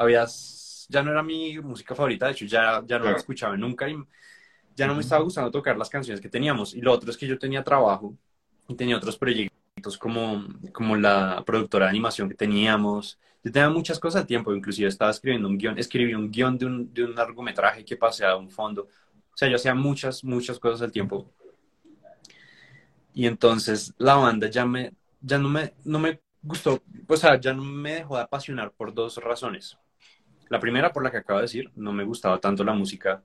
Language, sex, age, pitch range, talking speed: English, male, 20-39, 105-130 Hz, 210 wpm